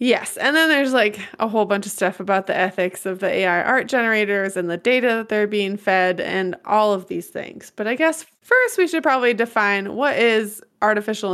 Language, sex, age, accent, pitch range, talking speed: English, female, 20-39, American, 190-240 Hz, 215 wpm